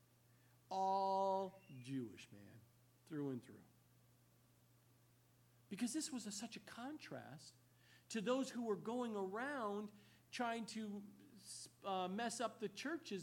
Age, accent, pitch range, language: 50-69, American, 185-275 Hz, English